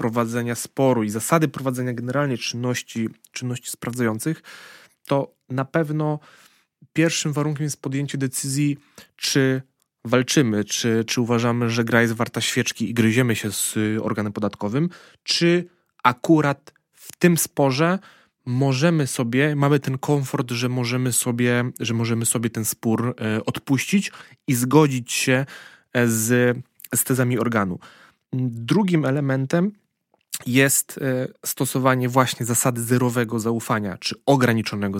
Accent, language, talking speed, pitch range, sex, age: native, Polish, 115 wpm, 120-145 Hz, male, 20-39